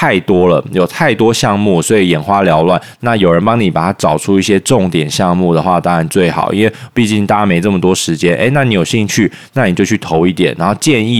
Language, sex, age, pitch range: Chinese, male, 20-39, 90-115 Hz